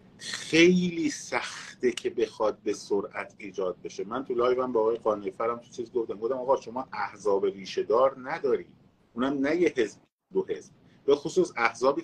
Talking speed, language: 165 wpm, Persian